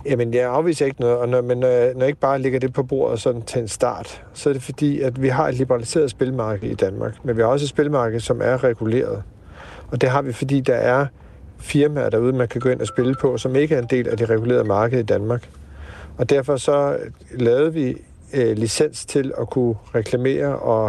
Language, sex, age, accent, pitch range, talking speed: Danish, male, 50-69, native, 115-140 Hz, 235 wpm